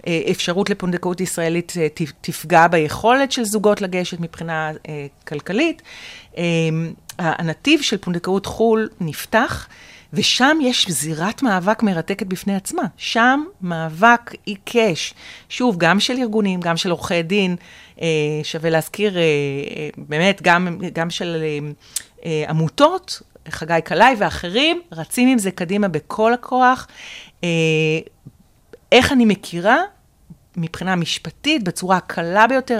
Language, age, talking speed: Hebrew, 40-59, 105 wpm